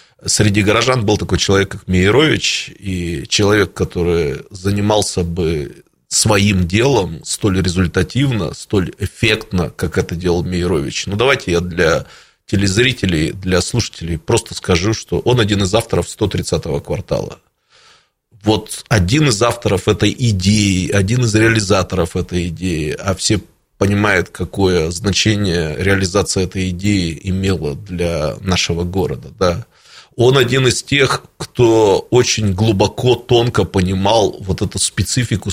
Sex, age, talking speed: male, 20-39, 125 wpm